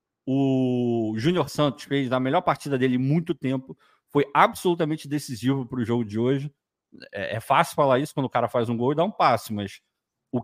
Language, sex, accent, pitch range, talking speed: Portuguese, male, Brazilian, 120-170 Hz, 200 wpm